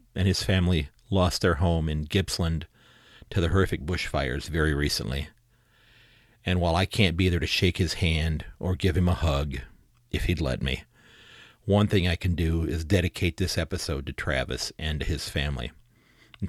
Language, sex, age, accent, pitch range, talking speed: English, male, 40-59, American, 80-95 Hz, 175 wpm